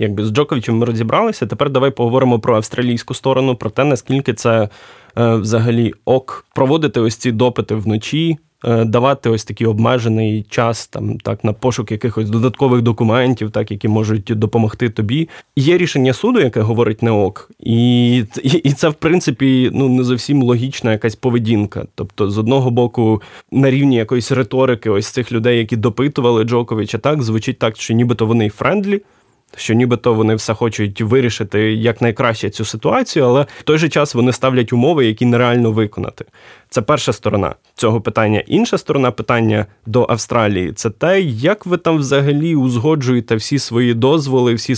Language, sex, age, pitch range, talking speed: Ukrainian, male, 20-39, 115-135 Hz, 165 wpm